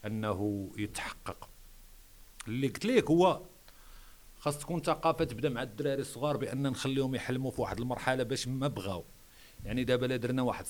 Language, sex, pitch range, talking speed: Arabic, male, 115-145 Hz, 150 wpm